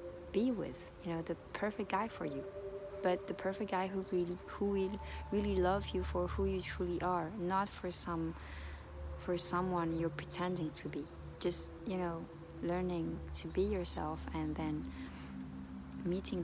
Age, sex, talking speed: 20-39, female, 155 wpm